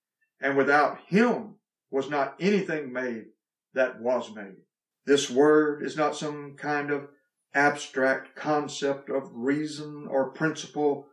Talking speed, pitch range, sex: 125 wpm, 135-170 Hz, male